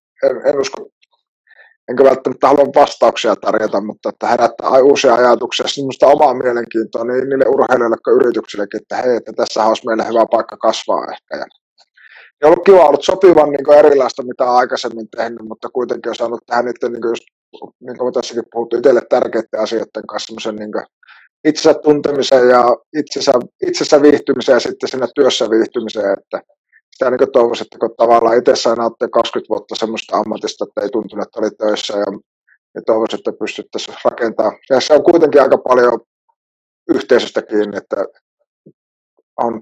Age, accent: 30-49, native